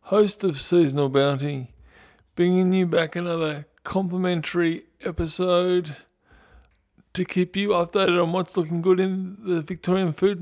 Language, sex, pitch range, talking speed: English, male, 135-180 Hz, 125 wpm